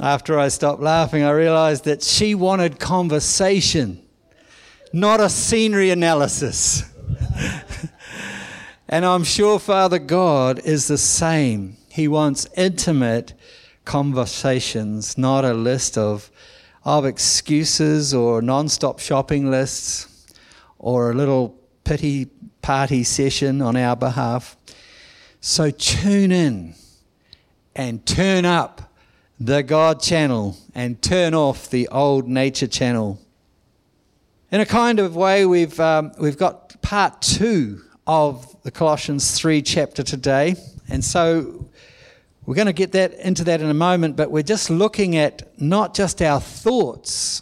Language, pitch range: English, 130-180 Hz